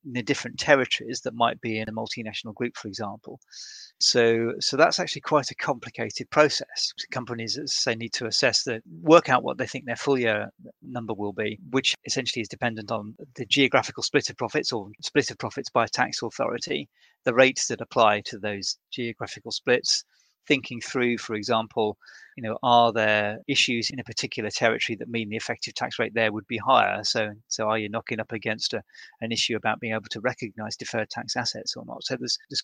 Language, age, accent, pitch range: English, 30-49, British, 110-130 Hz